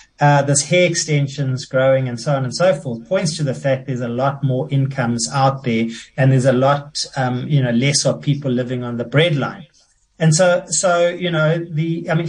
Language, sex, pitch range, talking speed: English, male, 135-165 Hz, 220 wpm